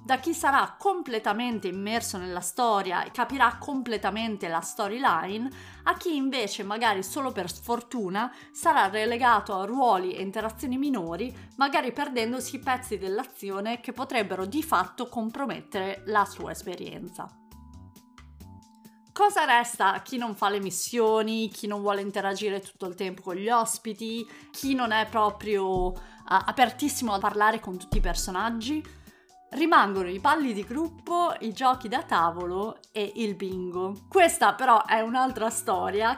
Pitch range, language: 195-255 Hz, Italian